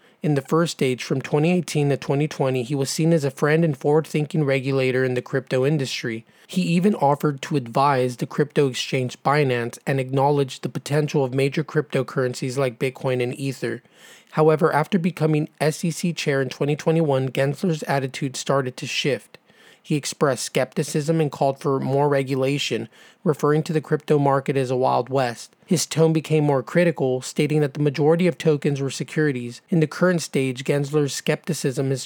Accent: American